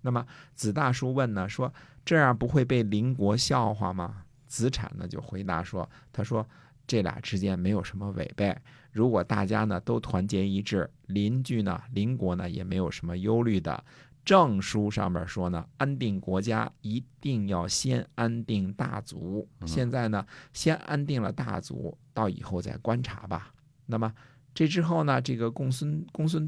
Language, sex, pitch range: Chinese, male, 95-130 Hz